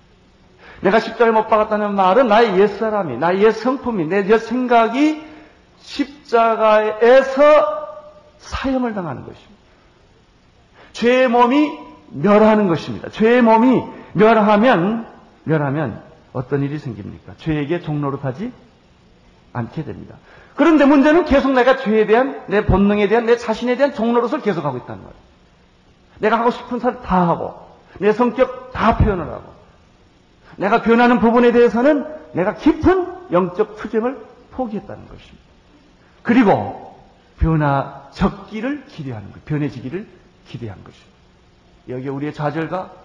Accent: native